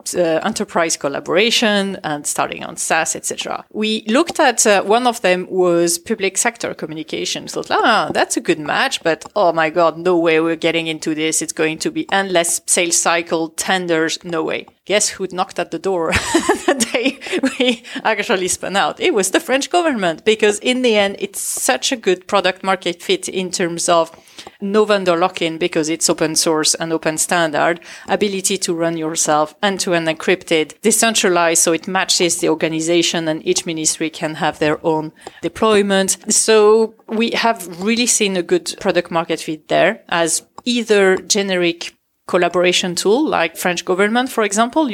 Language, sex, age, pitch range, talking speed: English, female, 30-49, 165-210 Hz, 170 wpm